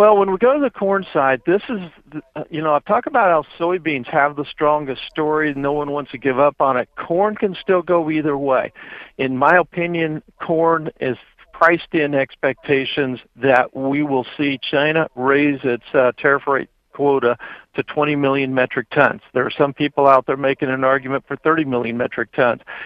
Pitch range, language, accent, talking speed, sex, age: 130-160 Hz, English, American, 190 wpm, male, 60-79